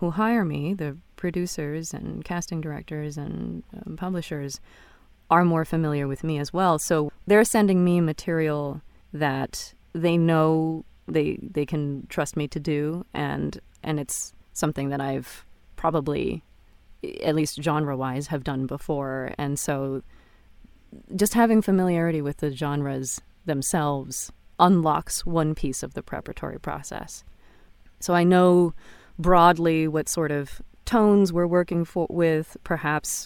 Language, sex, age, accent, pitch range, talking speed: English, female, 30-49, American, 145-170 Hz, 135 wpm